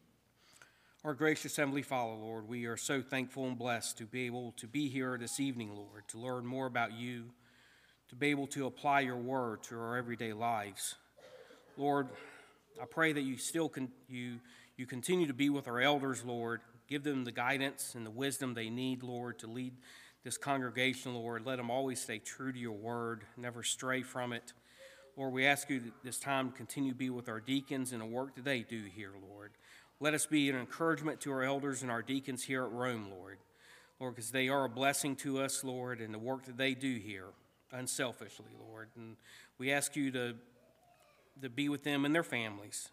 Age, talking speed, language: 40-59, 205 wpm, English